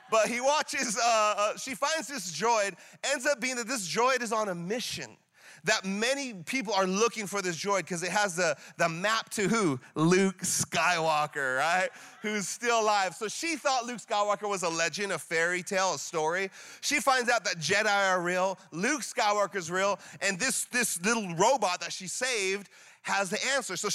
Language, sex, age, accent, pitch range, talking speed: English, male, 30-49, American, 180-235 Hz, 190 wpm